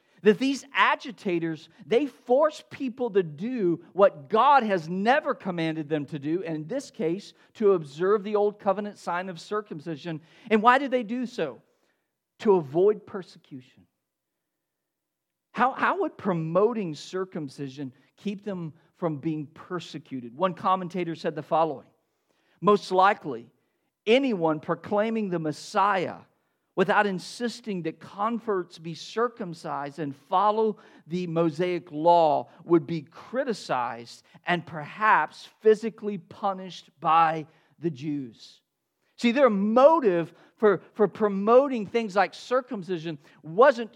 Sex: male